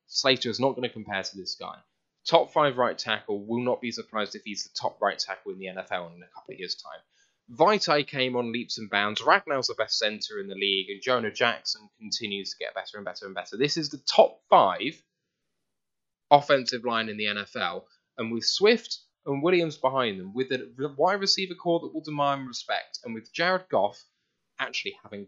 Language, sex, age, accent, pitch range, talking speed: English, male, 10-29, British, 115-180 Hz, 210 wpm